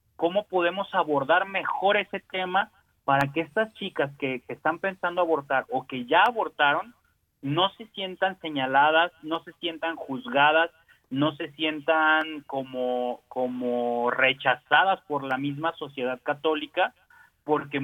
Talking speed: 130 wpm